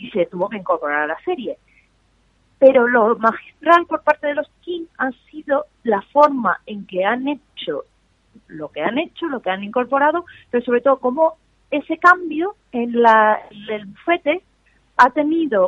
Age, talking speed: 30-49, 170 wpm